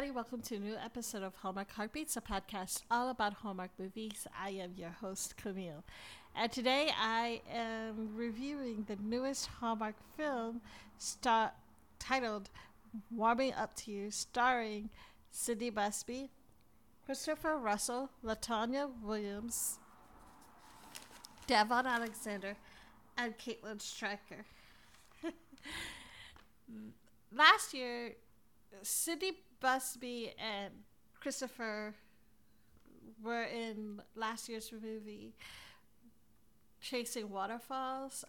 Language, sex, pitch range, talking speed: English, female, 210-260 Hz, 90 wpm